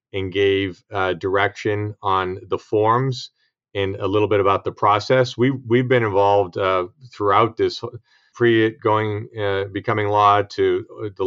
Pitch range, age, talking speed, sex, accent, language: 95-110 Hz, 40-59, 150 wpm, male, American, English